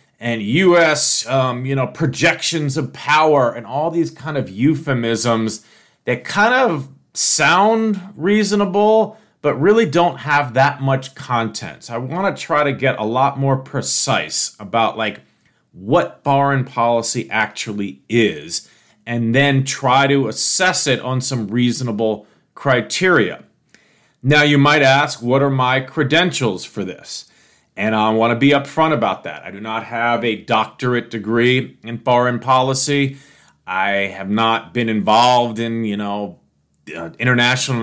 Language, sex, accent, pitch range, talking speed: English, male, American, 115-140 Hz, 145 wpm